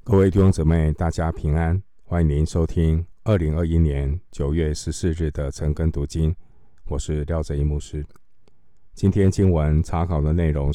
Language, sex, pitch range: Chinese, male, 75-85 Hz